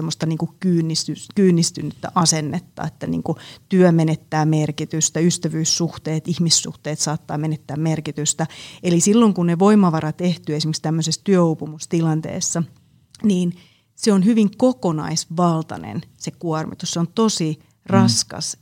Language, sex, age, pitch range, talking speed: Finnish, female, 30-49, 155-180 Hz, 110 wpm